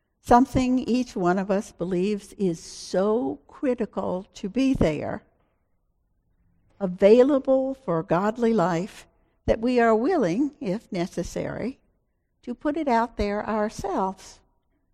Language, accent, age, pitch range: English, American, 60-79, 180-240 Hz